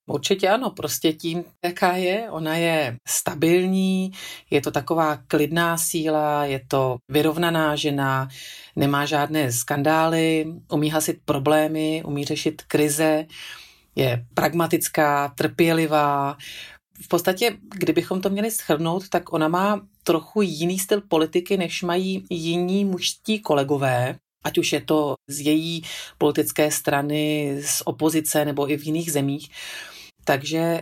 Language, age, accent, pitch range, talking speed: Czech, 40-59, native, 150-180 Hz, 125 wpm